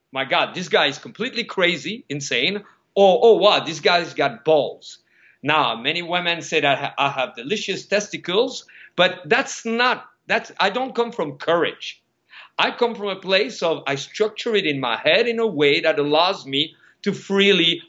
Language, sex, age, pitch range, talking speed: English, male, 50-69, 145-195 Hz, 180 wpm